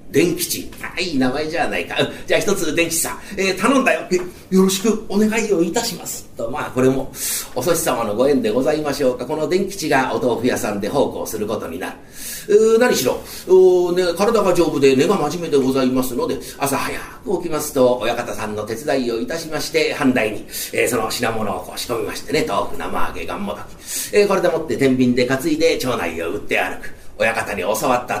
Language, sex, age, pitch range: Japanese, male, 40-59, 150-230 Hz